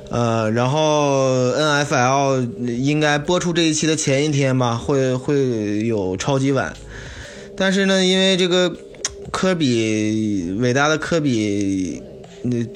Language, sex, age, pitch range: Chinese, male, 20-39, 115-150 Hz